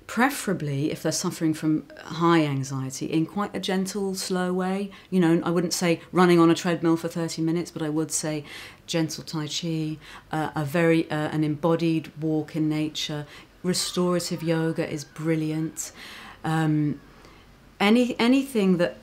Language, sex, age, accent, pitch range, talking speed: English, female, 40-59, British, 155-180 Hz, 155 wpm